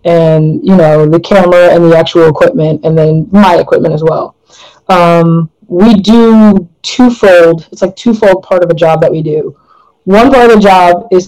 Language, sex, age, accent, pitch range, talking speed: English, female, 20-39, American, 170-205 Hz, 185 wpm